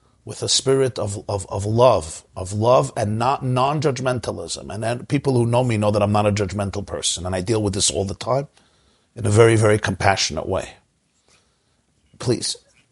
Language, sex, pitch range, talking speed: English, male, 105-135 Hz, 185 wpm